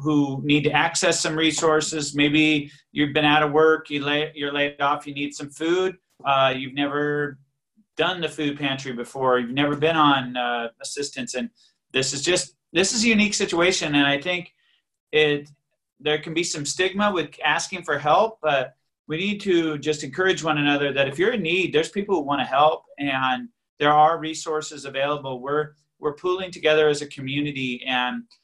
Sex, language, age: male, English, 40-59